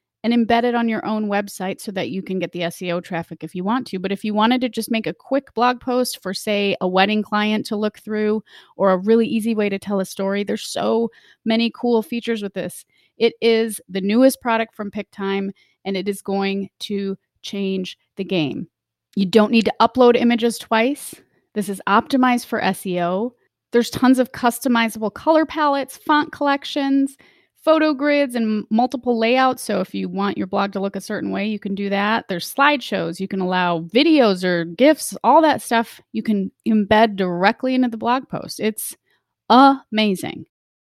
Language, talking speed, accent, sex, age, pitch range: English, 190 wpm, American, female, 30-49, 195-240 Hz